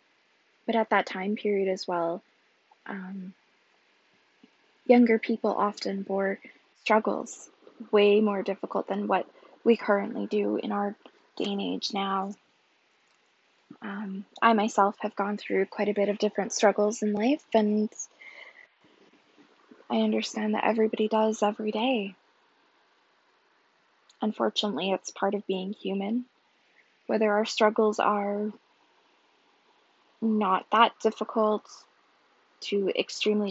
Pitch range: 205-230 Hz